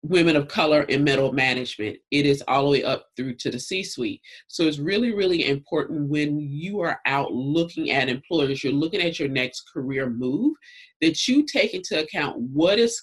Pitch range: 140-180 Hz